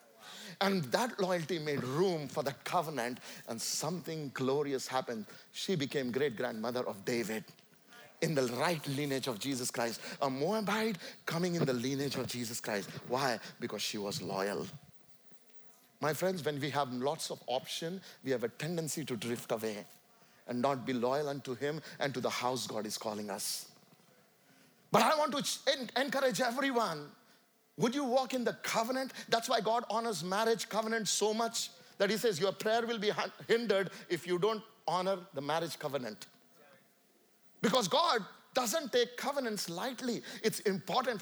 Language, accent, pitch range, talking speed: English, Indian, 155-235 Hz, 160 wpm